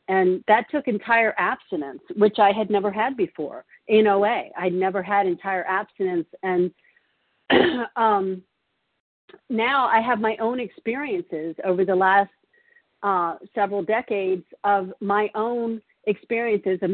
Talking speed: 130 wpm